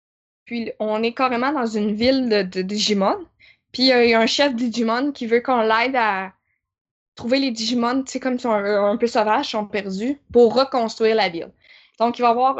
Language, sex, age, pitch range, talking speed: French, female, 20-39, 215-270 Hz, 220 wpm